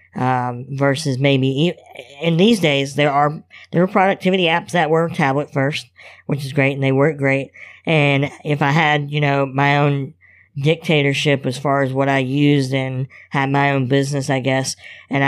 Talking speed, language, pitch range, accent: 180 wpm, English, 135-155 Hz, American